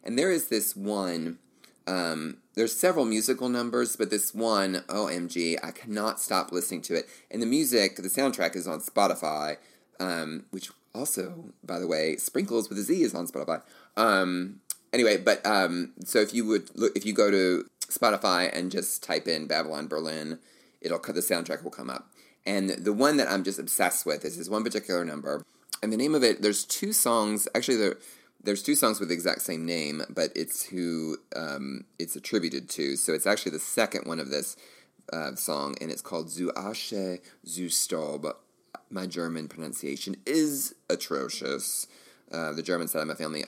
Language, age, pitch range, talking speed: English, 30-49, 80-110 Hz, 190 wpm